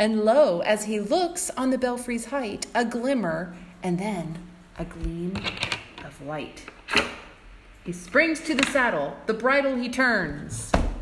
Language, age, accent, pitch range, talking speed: English, 40-59, American, 190-270 Hz, 140 wpm